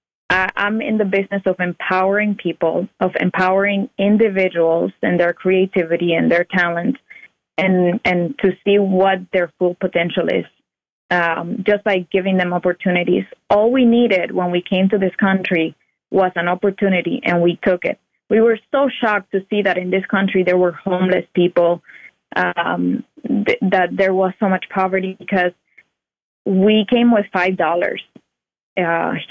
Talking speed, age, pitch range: 155 wpm, 20-39, 180-200 Hz